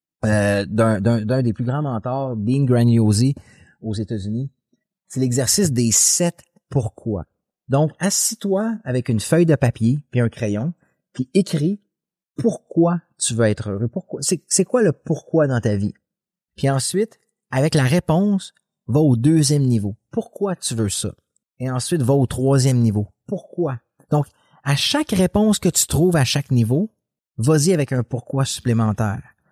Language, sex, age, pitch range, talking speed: French, male, 30-49, 110-155 Hz, 160 wpm